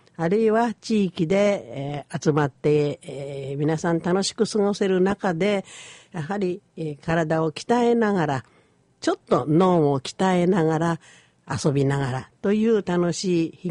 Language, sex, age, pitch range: Japanese, female, 50-69, 150-195 Hz